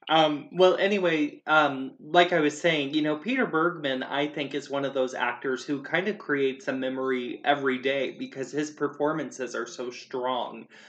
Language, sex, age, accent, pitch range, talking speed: English, male, 20-39, American, 125-150 Hz, 180 wpm